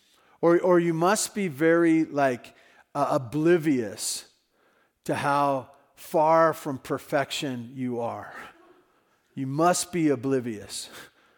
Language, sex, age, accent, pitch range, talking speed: English, male, 40-59, American, 155-215 Hz, 105 wpm